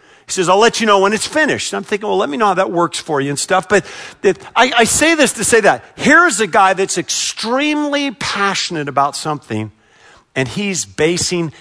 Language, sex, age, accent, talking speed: English, male, 50-69, American, 210 wpm